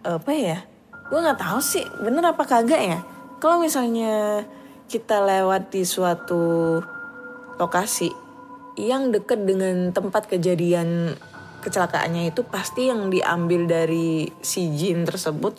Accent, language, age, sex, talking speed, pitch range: native, Indonesian, 20-39, female, 120 wpm, 160-235 Hz